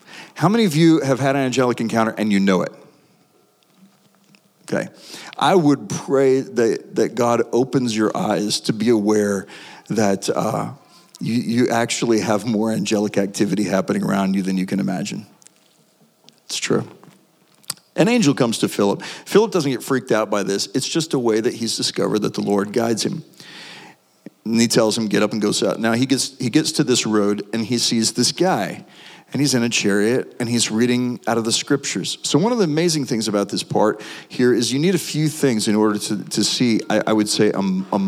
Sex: male